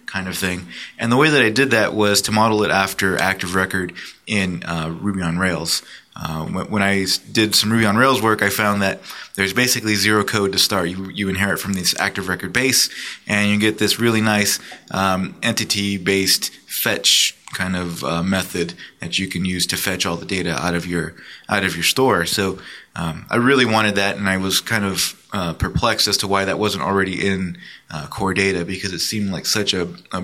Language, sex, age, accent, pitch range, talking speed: English, male, 20-39, American, 95-110 Hz, 220 wpm